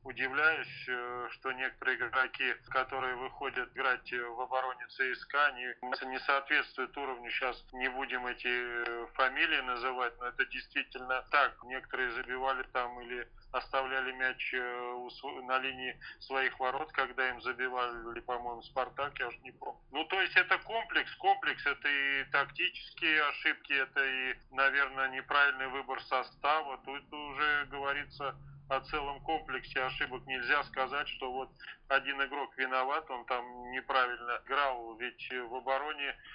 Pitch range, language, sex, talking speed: 125-135 Hz, Russian, male, 135 wpm